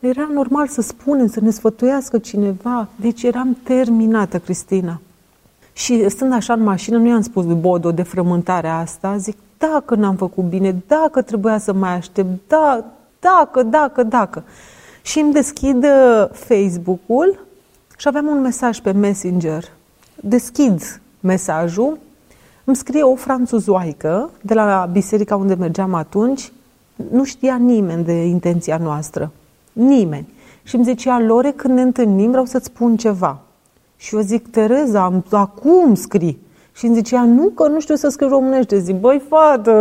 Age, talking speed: 30-49, 150 wpm